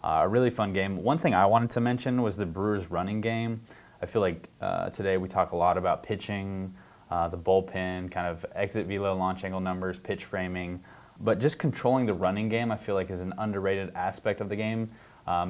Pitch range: 95-105 Hz